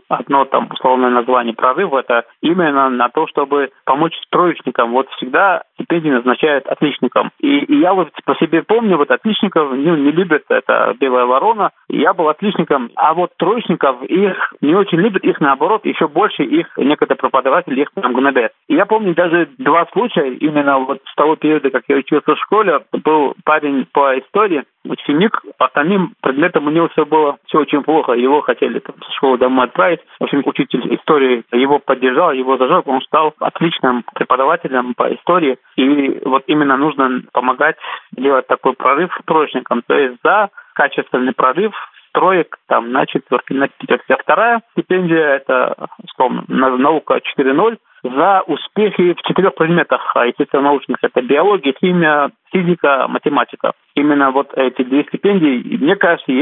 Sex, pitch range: male, 135-185 Hz